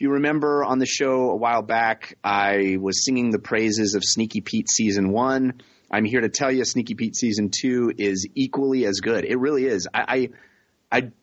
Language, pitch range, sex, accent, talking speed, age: English, 95-130 Hz, male, American, 200 wpm, 30-49